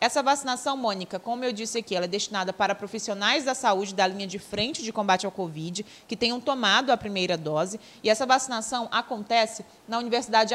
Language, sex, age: Portuguese, female, 20-39